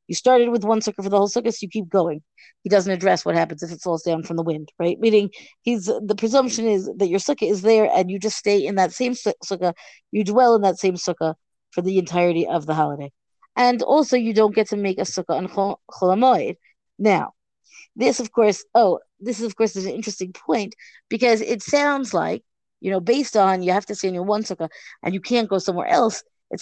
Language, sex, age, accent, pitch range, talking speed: English, female, 30-49, American, 185-225 Hz, 230 wpm